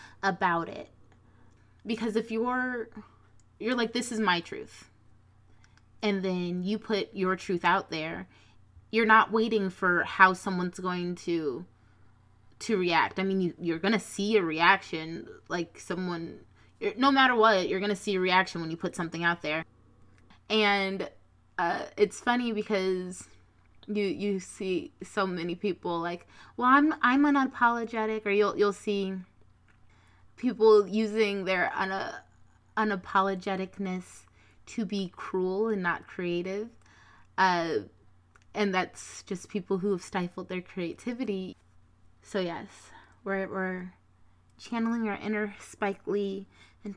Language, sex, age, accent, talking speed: English, female, 20-39, American, 130 wpm